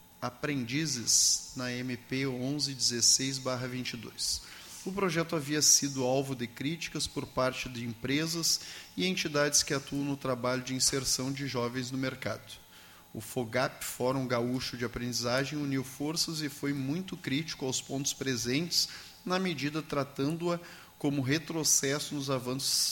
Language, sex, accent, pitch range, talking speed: Portuguese, male, Brazilian, 130-150 Hz, 130 wpm